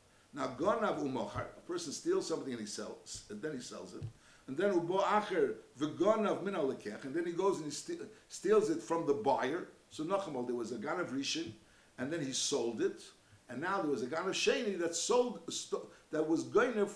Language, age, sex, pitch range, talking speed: English, 60-79, male, 140-215 Hz, 190 wpm